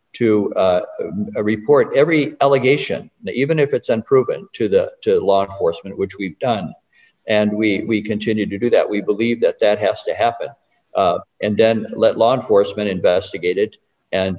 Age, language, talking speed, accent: 50-69, English, 165 wpm, American